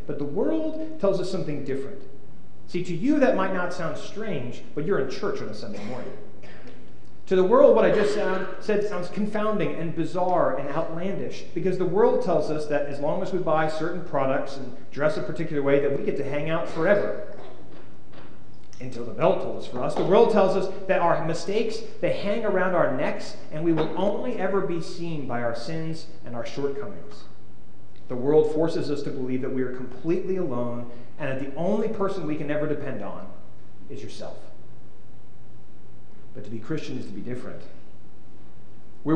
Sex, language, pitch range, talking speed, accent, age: male, English, 140-190 Hz, 190 wpm, American, 40-59